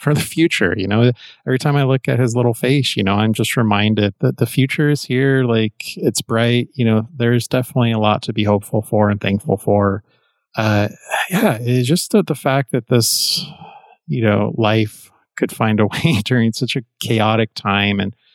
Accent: American